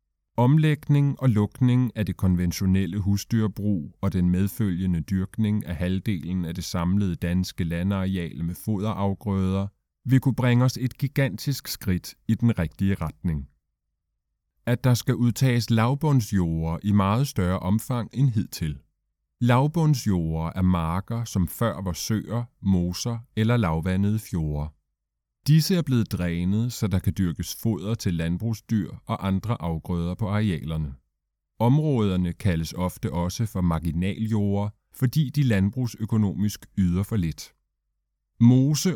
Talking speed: 125 wpm